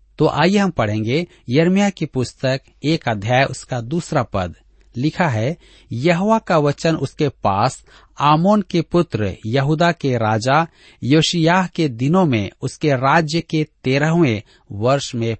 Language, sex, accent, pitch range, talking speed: Hindi, male, native, 115-165 Hz, 135 wpm